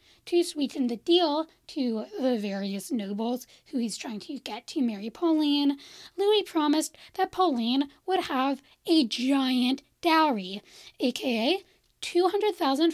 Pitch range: 265-360 Hz